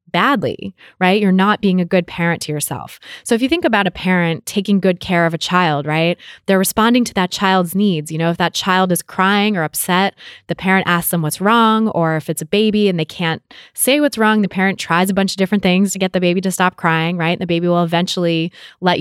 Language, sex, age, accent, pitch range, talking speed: English, female, 20-39, American, 165-195 Hz, 245 wpm